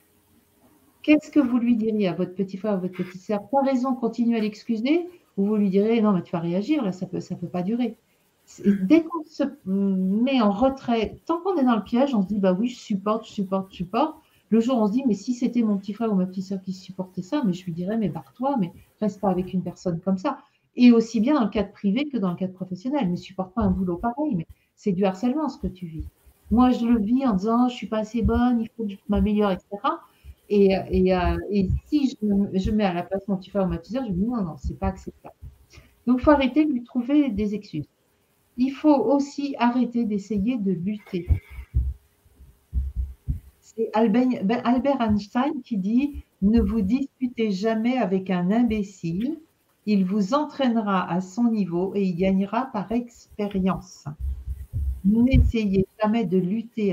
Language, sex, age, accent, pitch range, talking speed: French, female, 50-69, French, 185-245 Hz, 210 wpm